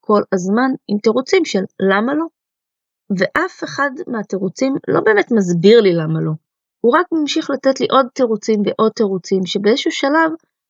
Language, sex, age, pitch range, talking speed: Hebrew, female, 20-39, 190-240 Hz, 150 wpm